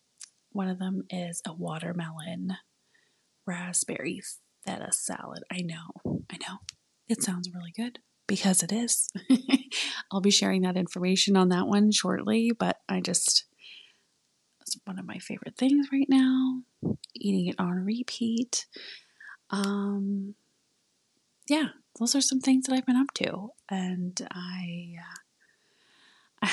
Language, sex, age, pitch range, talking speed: English, female, 30-49, 180-215 Hz, 135 wpm